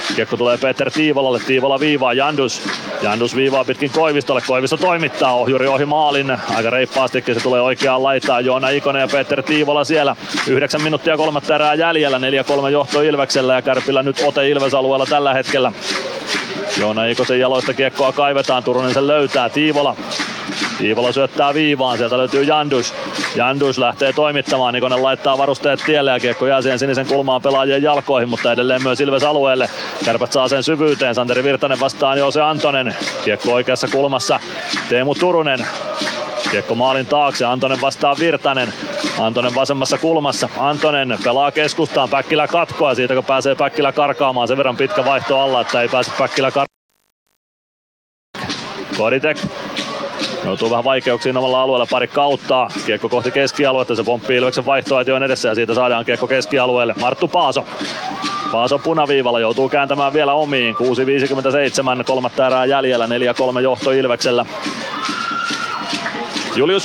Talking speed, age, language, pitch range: 140 wpm, 30-49, Finnish, 125-145 Hz